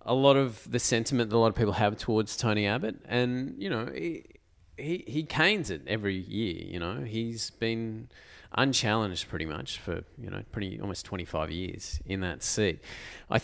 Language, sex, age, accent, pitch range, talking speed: English, male, 30-49, Australian, 95-130 Hz, 190 wpm